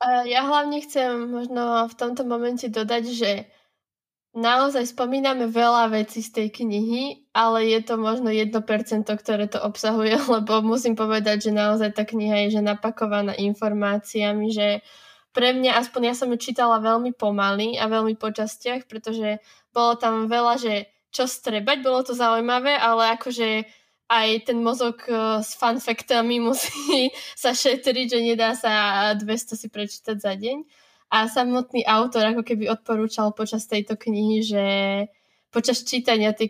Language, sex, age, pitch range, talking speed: Slovak, female, 10-29, 215-250 Hz, 150 wpm